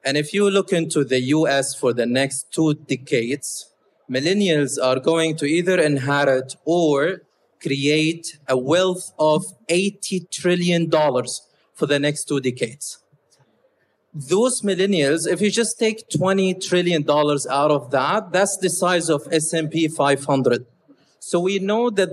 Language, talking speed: English, 140 wpm